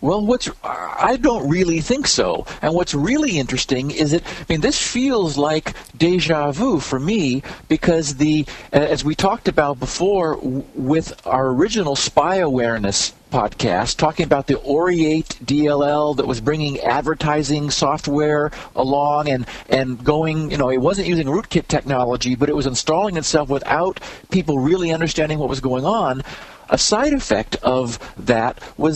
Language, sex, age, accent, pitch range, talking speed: English, male, 50-69, American, 135-170 Hz, 155 wpm